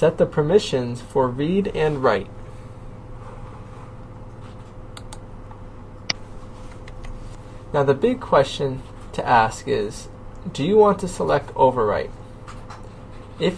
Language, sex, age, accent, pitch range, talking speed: English, male, 20-39, American, 105-140 Hz, 95 wpm